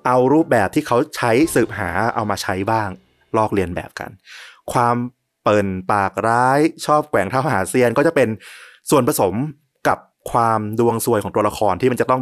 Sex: male